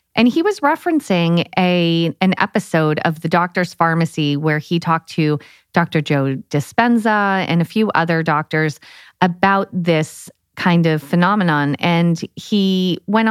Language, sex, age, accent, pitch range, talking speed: English, female, 30-49, American, 160-195 Hz, 140 wpm